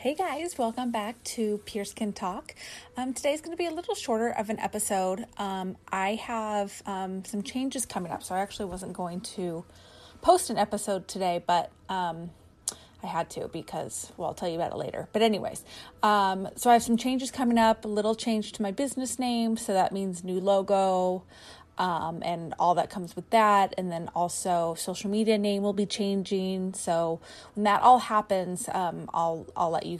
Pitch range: 180-220 Hz